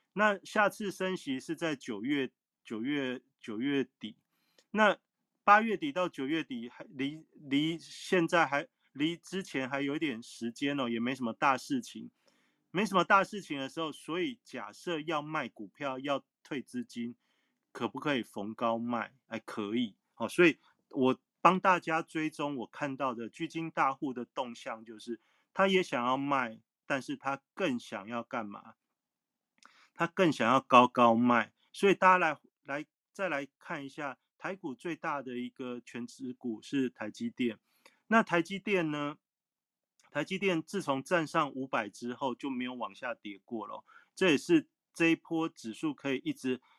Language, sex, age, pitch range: Chinese, male, 30-49, 120-165 Hz